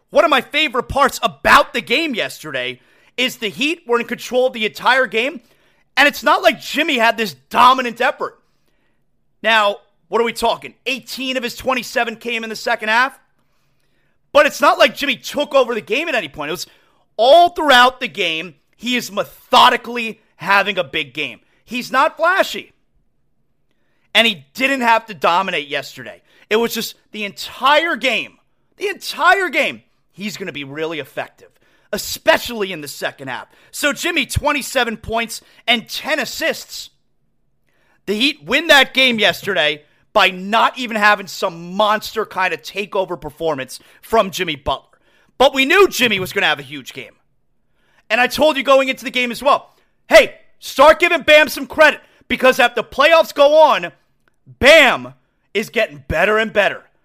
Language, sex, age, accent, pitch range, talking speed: English, male, 30-49, American, 205-280 Hz, 170 wpm